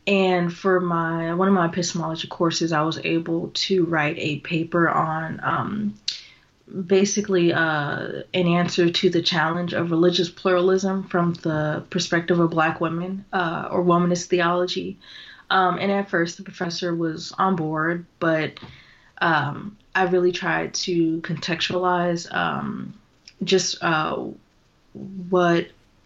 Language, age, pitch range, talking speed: English, 20-39, 165-185 Hz, 130 wpm